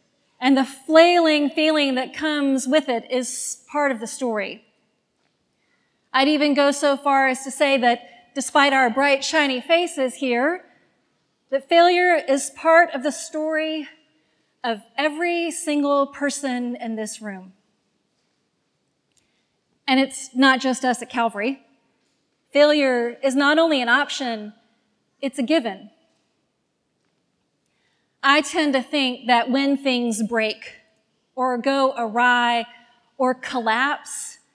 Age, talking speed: 40-59, 125 wpm